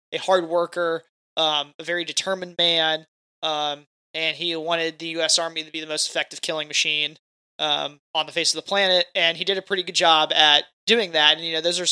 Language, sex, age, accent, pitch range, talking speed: English, male, 20-39, American, 155-180 Hz, 225 wpm